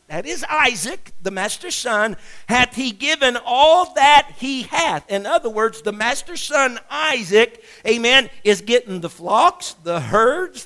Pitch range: 155-245 Hz